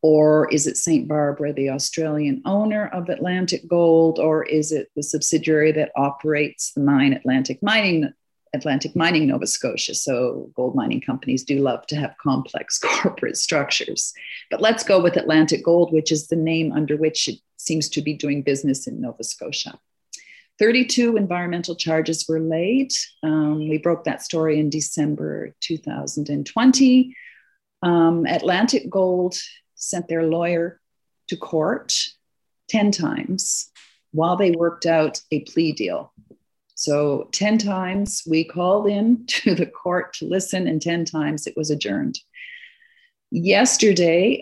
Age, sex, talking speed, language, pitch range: 40-59, female, 145 wpm, English, 155-190 Hz